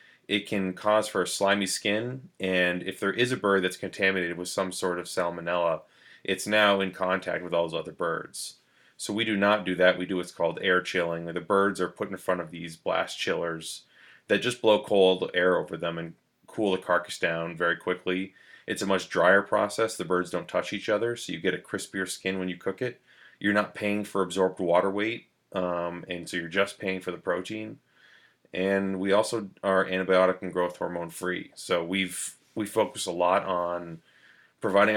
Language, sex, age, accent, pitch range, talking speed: English, male, 30-49, American, 90-100 Hz, 200 wpm